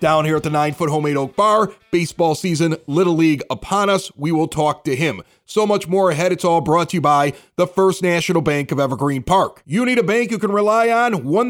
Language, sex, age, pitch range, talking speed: English, male, 30-49, 165-220 Hz, 235 wpm